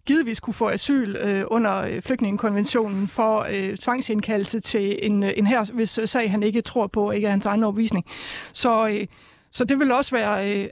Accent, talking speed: native, 185 wpm